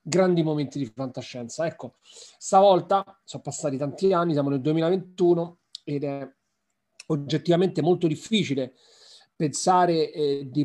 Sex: male